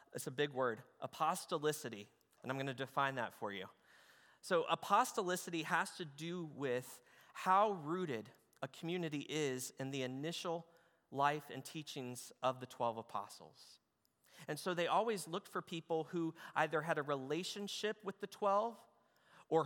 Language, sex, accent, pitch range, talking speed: English, male, American, 135-175 Hz, 155 wpm